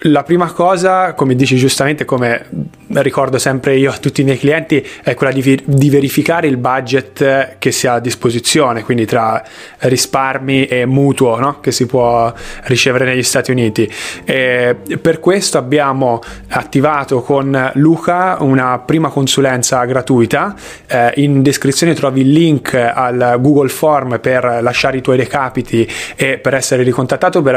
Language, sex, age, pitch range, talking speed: Italian, male, 20-39, 130-150 Hz, 145 wpm